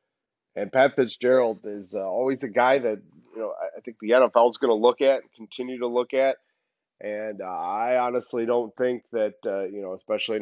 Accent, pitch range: American, 100-155 Hz